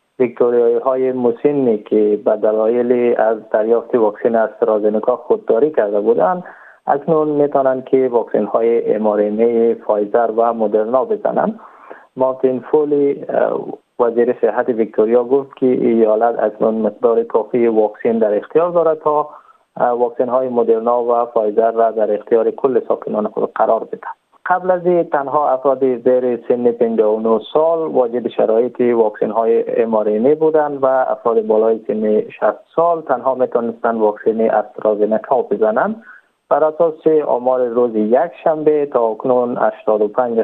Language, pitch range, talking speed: Persian, 115-150 Hz, 130 wpm